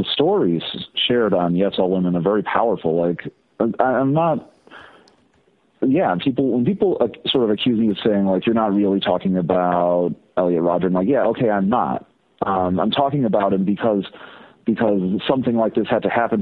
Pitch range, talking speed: 90-110 Hz, 185 wpm